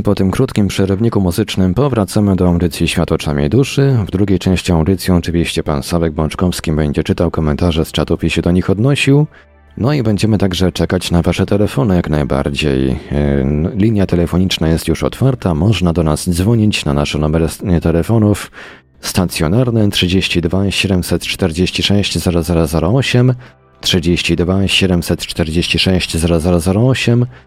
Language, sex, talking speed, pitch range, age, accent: Polish, male, 130 wpm, 80-100 Hz, 40-59, native